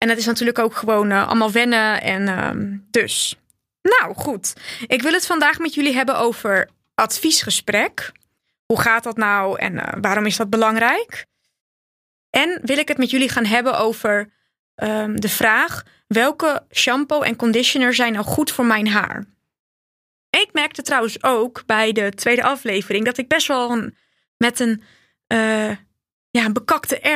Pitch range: 215-260 Hz